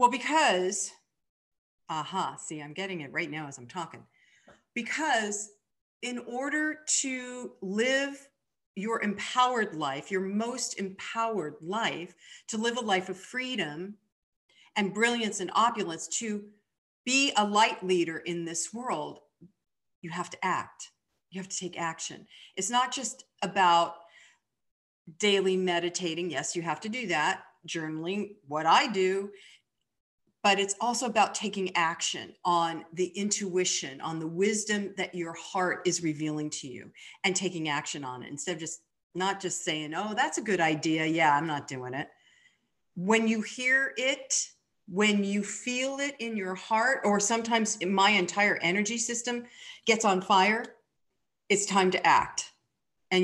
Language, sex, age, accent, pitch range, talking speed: English, female, 40-59, American, 170-220 Hz, 150 wpm